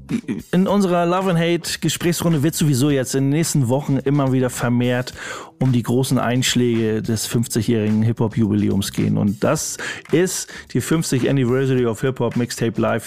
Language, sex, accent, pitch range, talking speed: German, male, German, 115-145 Hz, 155 wpm